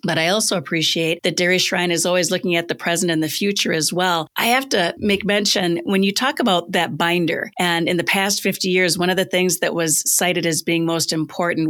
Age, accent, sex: 40-59, American, female